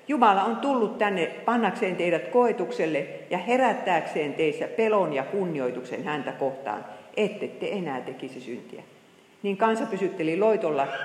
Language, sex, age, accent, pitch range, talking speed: Finnish, female, 50-69, native, 160-245 Hz, 130 wpm